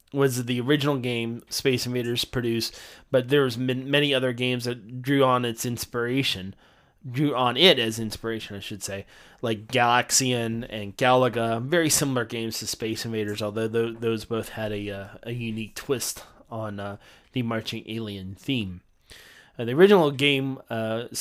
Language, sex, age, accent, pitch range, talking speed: English, male, 20-39, American, 110-130 Hz, 155 wpm